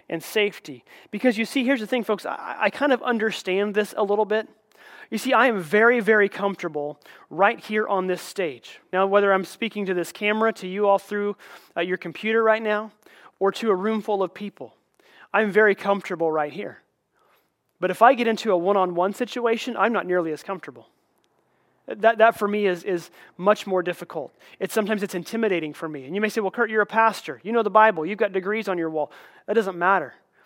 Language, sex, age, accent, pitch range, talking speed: English, male, 30-49, American, 185-225 Hz, 215 wpm